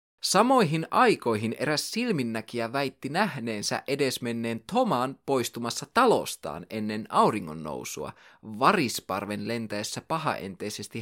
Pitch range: 115-180 Hz